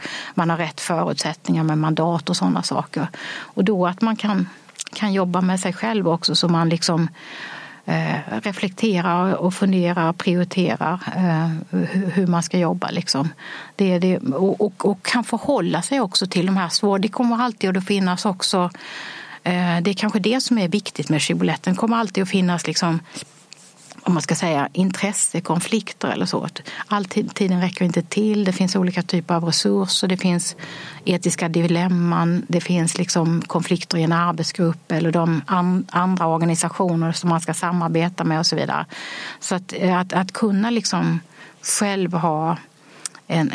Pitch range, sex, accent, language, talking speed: 165-195 Hz, female, native, Swedish, 165 wpm